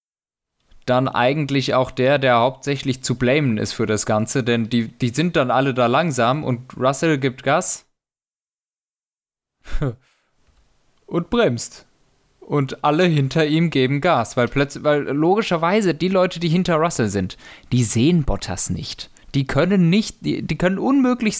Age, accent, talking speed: 20-39, German, 150 wpm